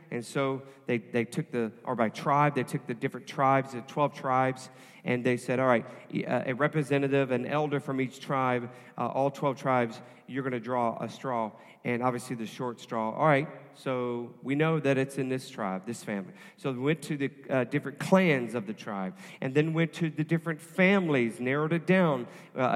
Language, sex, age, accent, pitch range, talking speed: English, male, 40-59, American, 120-160 Hz, 205 wpm